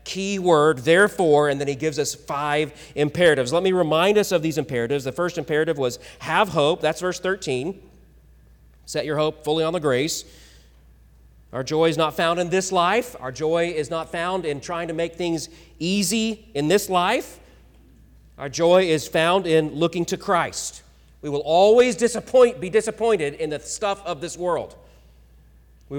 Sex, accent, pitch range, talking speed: male, American, 115-175 Hz, 175 wpm